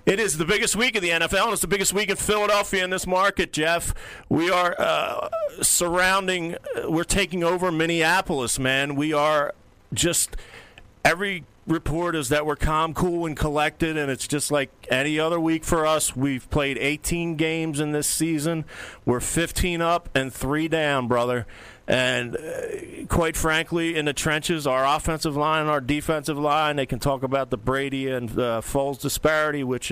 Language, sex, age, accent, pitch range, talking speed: English, male, 40-59, American, 120-160 Hz, 175 wpm